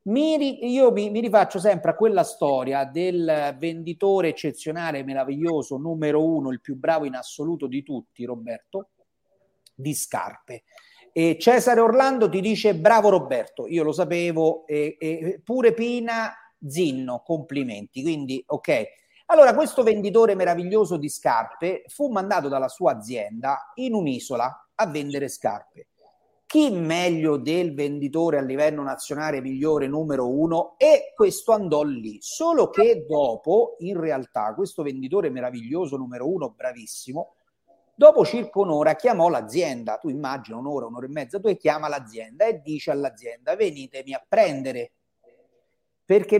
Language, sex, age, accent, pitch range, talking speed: Italian, male, 40-59, native, 145-225 Hz, 130 wpm